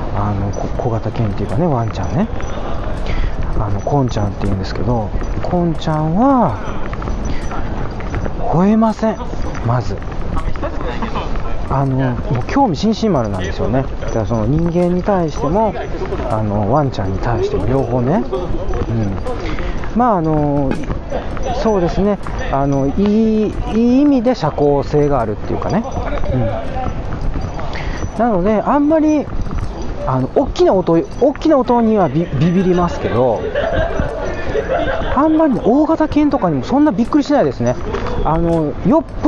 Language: Japanese